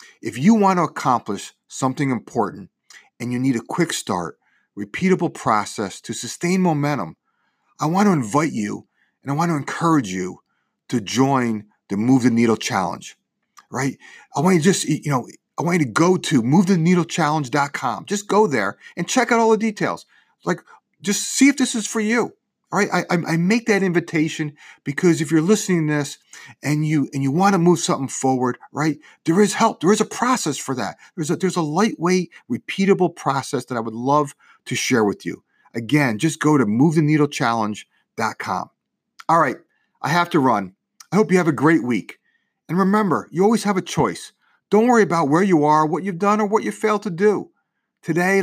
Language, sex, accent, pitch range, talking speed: English, male, American, 140-195 Hz, 190 wpm